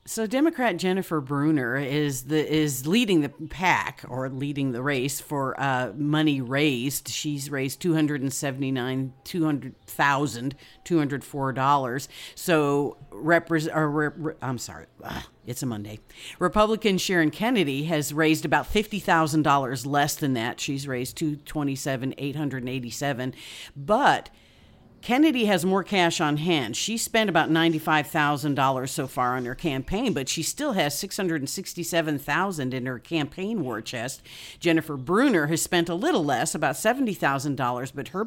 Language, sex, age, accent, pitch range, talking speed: English, female, 50-69, American, 135-165 Hz, 155 wpm